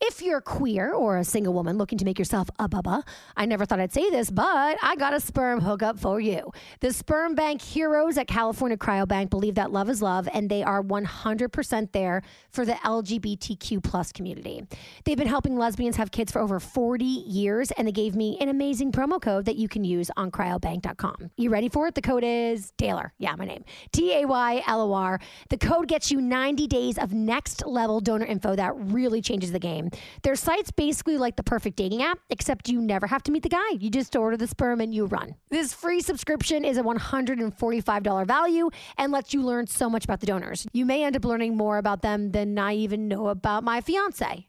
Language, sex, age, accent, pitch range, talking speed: English, female, 30-49, American, 210-275 Hz, 210 wpm